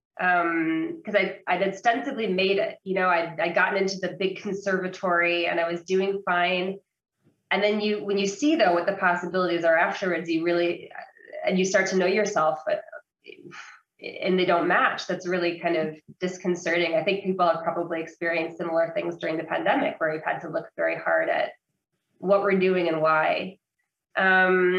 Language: English